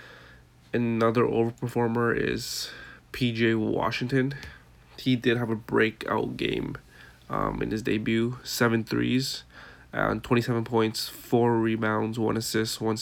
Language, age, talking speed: English, 20-39, 115 wpm